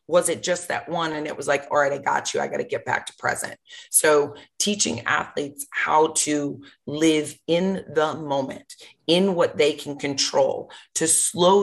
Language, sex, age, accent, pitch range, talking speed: English, female, 30-49, American, 150-175 Hz, 190 wpm